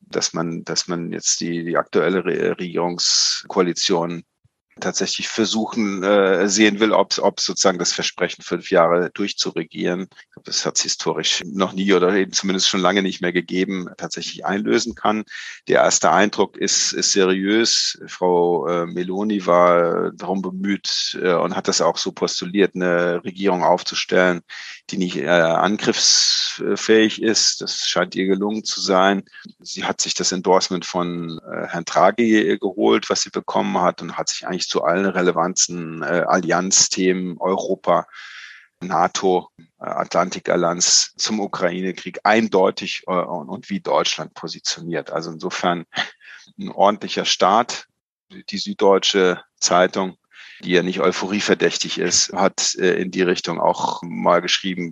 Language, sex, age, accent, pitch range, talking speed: German, male, 40-59, German, 90-100 Hz, 135 wpm